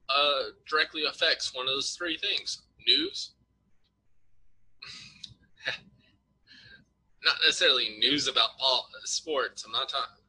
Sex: male